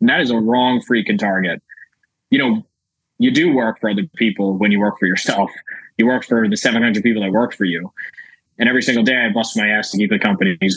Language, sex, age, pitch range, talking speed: English, male, 20-39, 110-160 Hz, 235 wpm